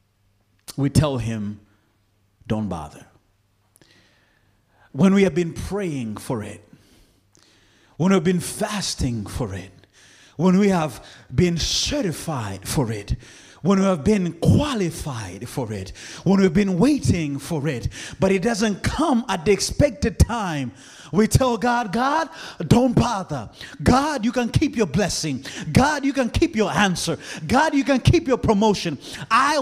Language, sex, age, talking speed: English, male, 30-49, 145 wpm